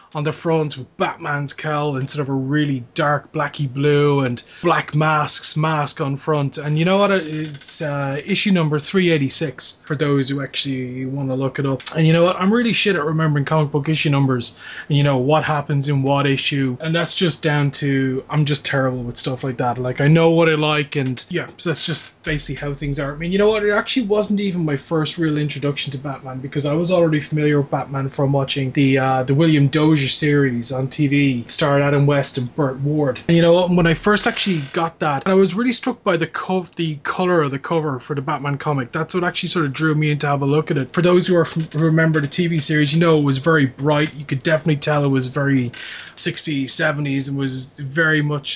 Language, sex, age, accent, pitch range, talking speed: English, male, 20-39, Irish, 140-165 Hz, 235 wpm